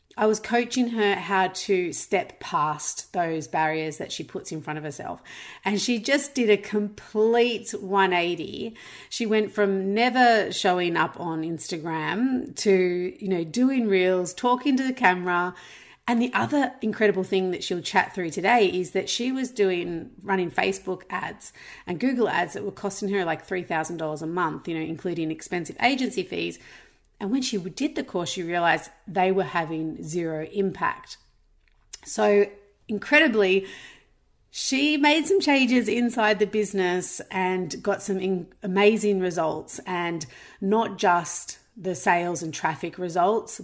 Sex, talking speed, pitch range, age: female, 155 wpm, 170-215 Hz, 40-59